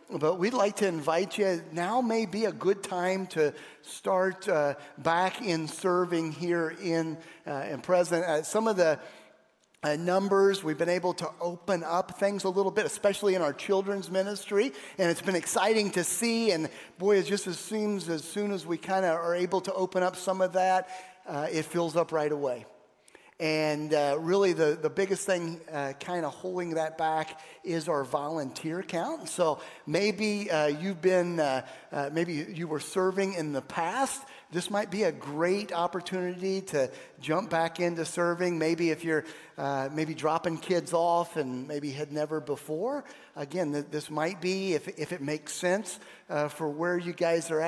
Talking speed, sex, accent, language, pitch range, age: 185 wpm, male, American, English, 155-190 Hz, 40-59